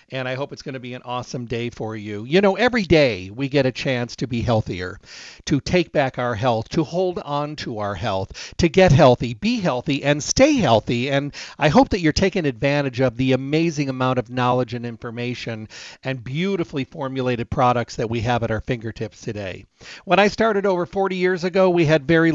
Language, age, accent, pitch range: English, 50-69, American, 125-165 Hz